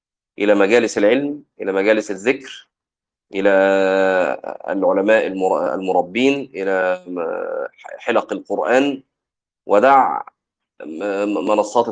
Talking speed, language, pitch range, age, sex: 70 wpm, Arabic, 105-135 Hz, 30-49, male